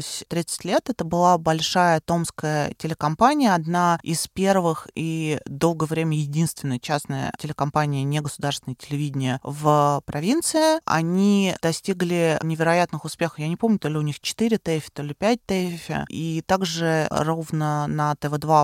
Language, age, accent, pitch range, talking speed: Russian, 20-39, native, 145-170 Hz, 135 wpm